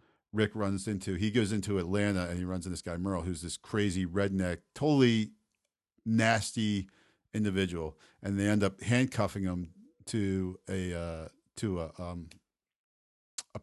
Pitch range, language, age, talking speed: 90-110 Hz, English, 50-69, 150 wpm